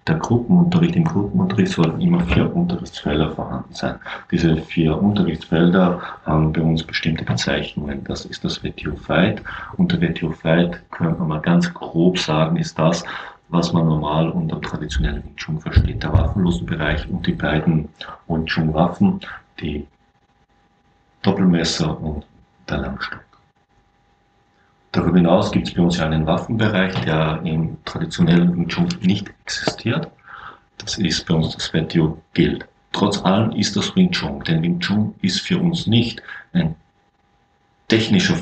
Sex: male